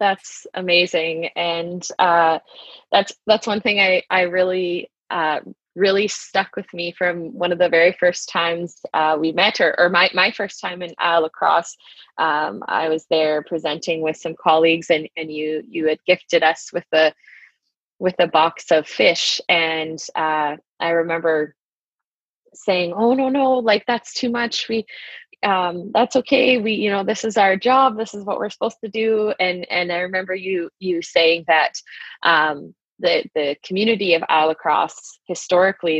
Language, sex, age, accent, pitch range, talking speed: English, female, 20-39, American, 160-200 Hz, 170 wpm